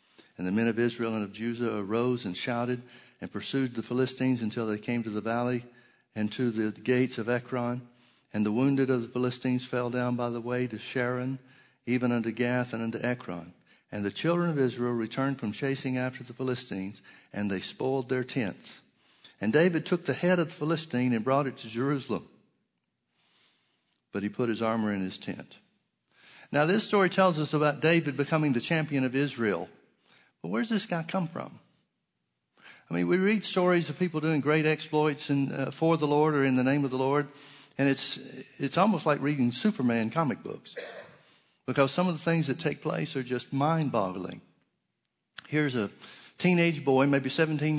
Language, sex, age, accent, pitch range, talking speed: English, male, 60-79, American, 120-150 Hz, 185 wpm